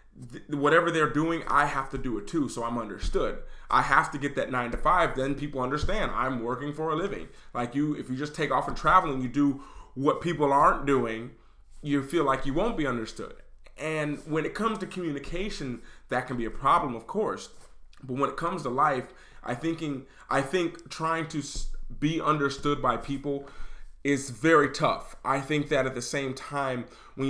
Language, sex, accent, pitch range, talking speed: English, male, American, 130-160 Hz, 200 wpm